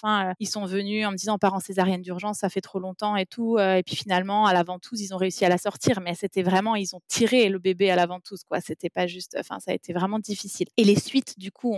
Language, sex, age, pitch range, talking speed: French, female, 20-39, 190-235 Hz, 275 wpm